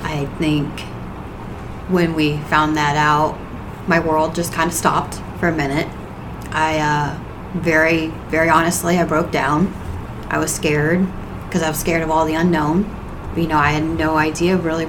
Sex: female